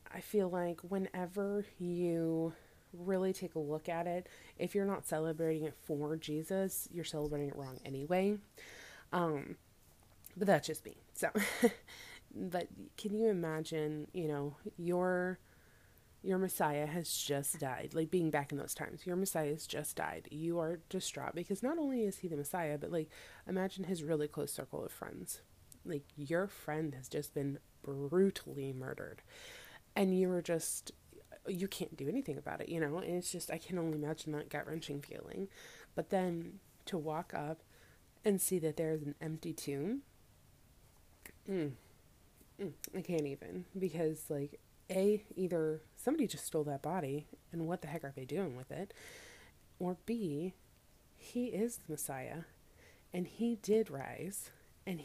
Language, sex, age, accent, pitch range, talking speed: English, female, 20-39, American, 150-190 Hz, 160 wpm